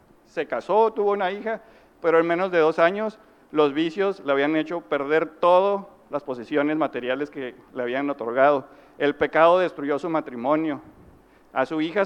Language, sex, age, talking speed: Spanish, male, 50-69, 165 wpm